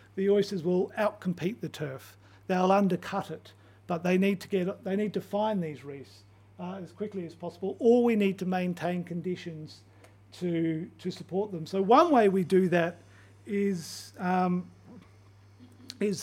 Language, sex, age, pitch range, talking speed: English, male, 50-69, 165-200 Hz, 165 wpm